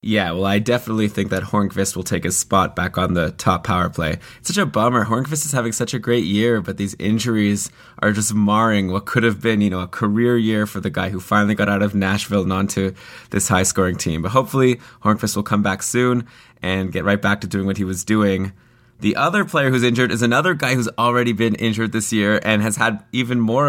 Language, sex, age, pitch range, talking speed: English, male, 20-39, 100-120 Hz, 235 wpm